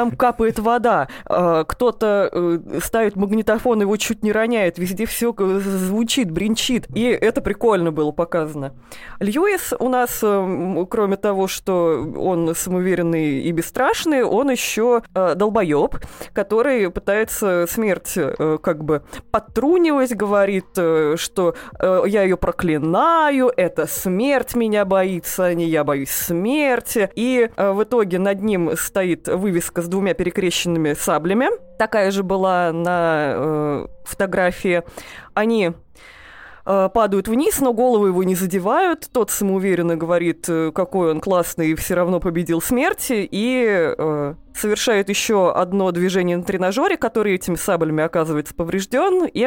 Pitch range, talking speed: 170-225 Hz, 125 wpm